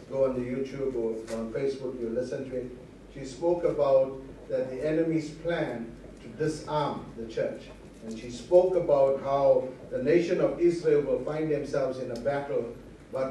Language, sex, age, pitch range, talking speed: English, male, 60-79, 135-170 Hz, 170 wpm